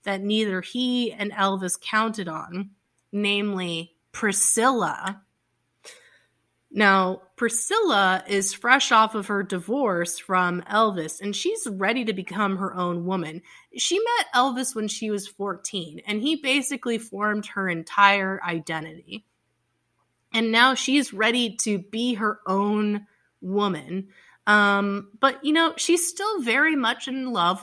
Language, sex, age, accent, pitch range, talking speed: English, female, 20-39, American, 190-230 Hz, 130 wpm